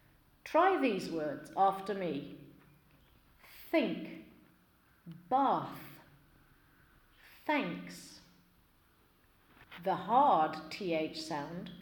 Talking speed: 60 wpm